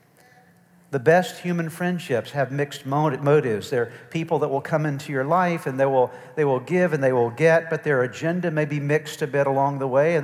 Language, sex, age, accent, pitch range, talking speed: English, male, 50-69, American, 125-165 Hz, 215 wpm